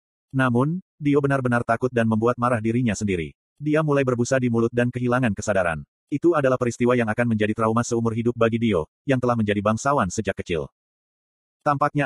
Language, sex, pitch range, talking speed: Indonesian, male, 110-140 Hz, 175 wpm